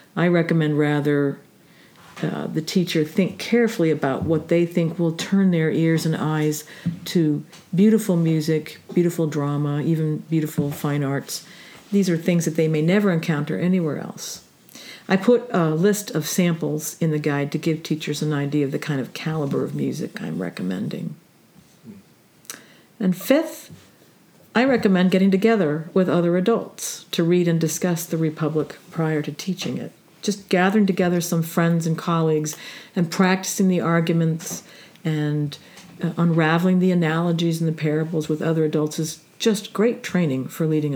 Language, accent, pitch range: English, American, 155-185 Hz